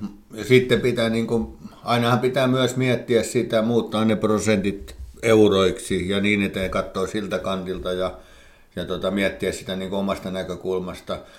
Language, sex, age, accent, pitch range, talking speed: Finnish, male, 60-79, native, 100-120 Hz, 140 wpm